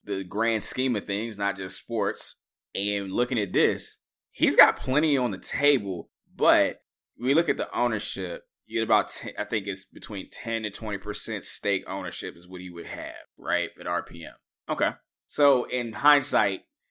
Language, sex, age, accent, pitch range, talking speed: English, male, 20-39, American, 95-120 Hz, 170 wpm